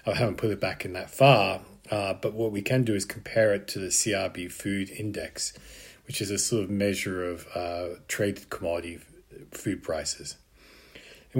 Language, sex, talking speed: English, male, 185 wpm